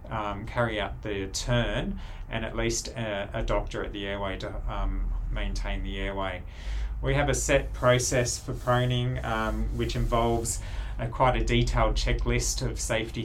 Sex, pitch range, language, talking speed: male, 100-120 Hz, English, 155 wpm